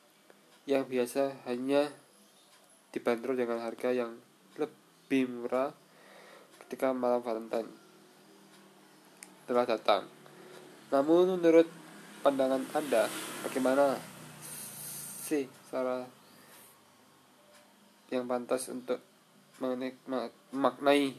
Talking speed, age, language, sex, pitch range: 75 wpm, 20-39, Indonesian, male, 125-140 Hz